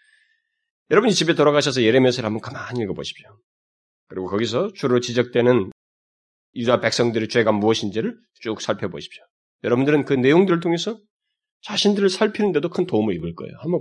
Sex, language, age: male, Korean, 30-49